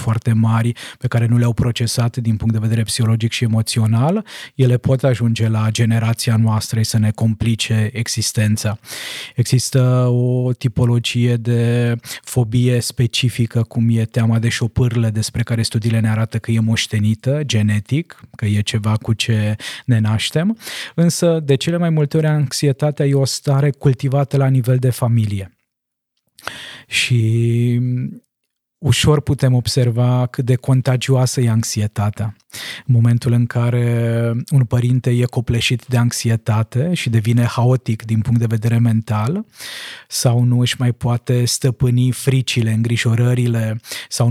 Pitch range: 115-130 Hz